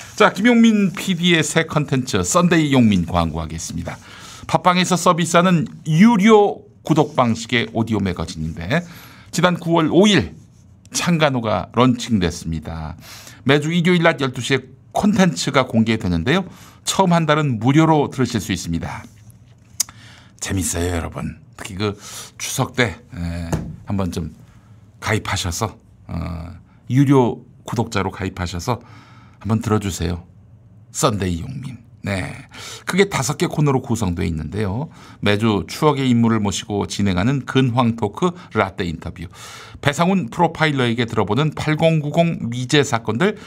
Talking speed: 100 wpm